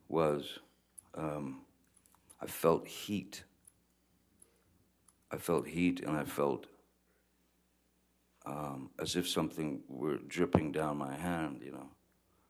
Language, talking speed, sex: English, 105 wpm, male